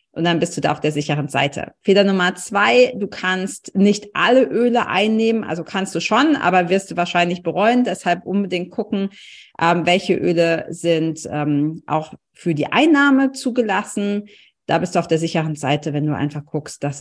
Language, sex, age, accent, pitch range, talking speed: German, female, 40-59, German, 155-200 Hz, 175 wpm